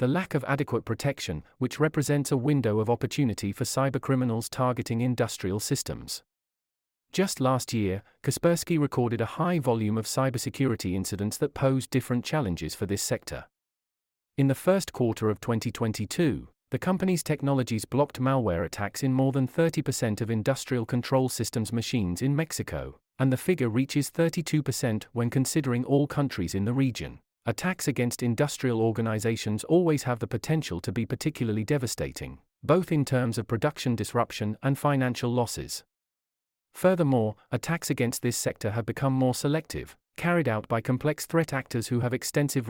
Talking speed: 150 wpm